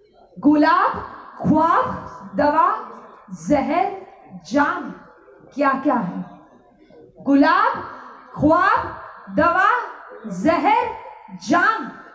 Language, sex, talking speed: Gujarati, female, 65 wpm